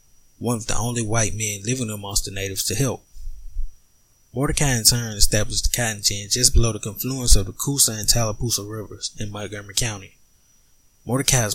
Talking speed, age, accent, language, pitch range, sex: 170 wpm, 20-39, American, English, 100-125 Hz, male